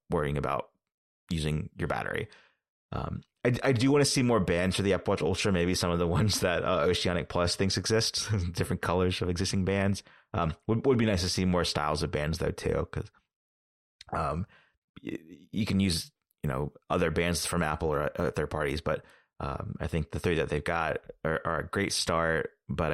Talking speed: 205 wpm